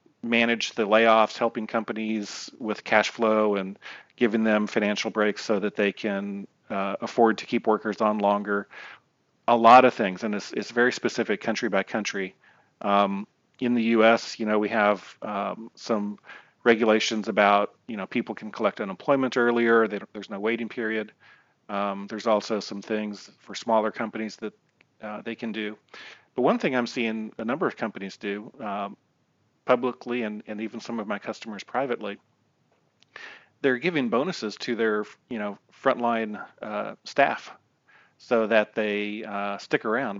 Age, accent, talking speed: 40-59, American, 165 wpm